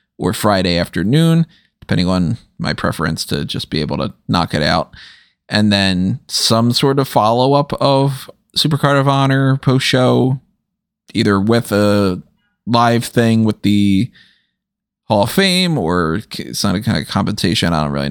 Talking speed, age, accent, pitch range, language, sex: 155 wpm, 30-49, American, 95-130 Hz, English, male